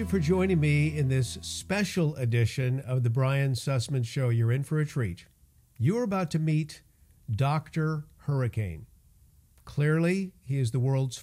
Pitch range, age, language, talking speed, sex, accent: 120-155 Hz, 50-69, English, 160 wpm, male, American